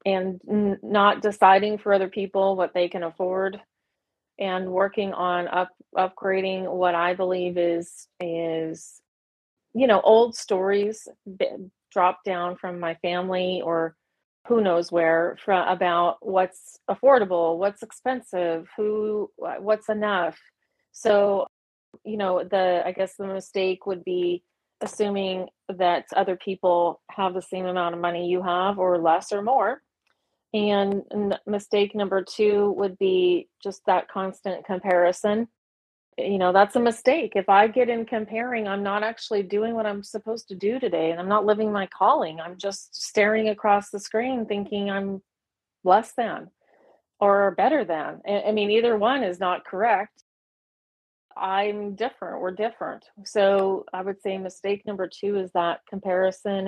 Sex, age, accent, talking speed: female, 30-49, American, 145 wpm